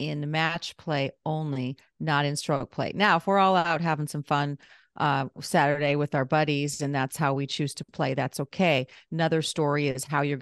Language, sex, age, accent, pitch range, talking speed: English, female, 40-59, American, 140-170 Hz, 200 wpm